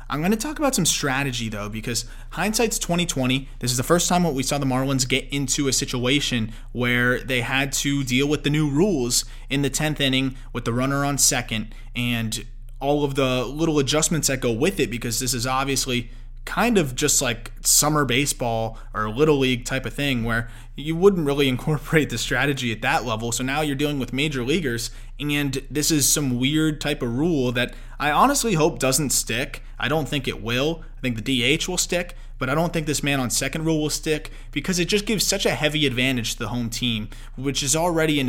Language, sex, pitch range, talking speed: English, male, 120-145 Hz, 215 wpm